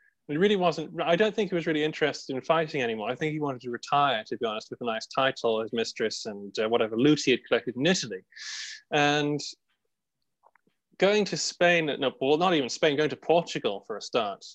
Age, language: 20-39, English